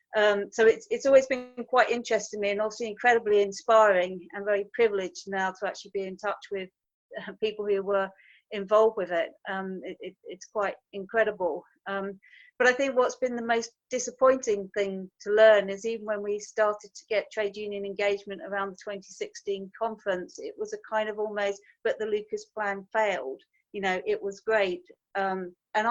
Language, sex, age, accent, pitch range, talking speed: English, female, 40-59, British, 195-220 Hz, 185 wpm